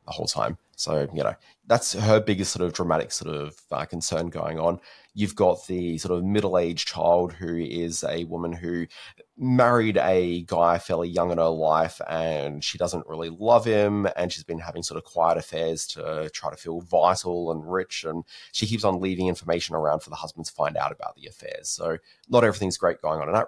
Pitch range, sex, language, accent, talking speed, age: 85-100 Hz, male, English, Australian, 210 wpm, 20-39